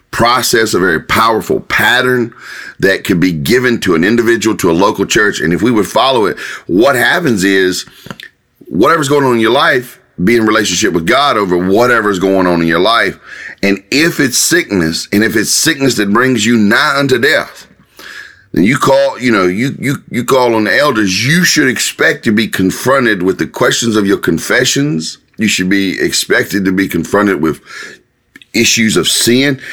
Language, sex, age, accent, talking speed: English, male, 40-59, American, 185 wpm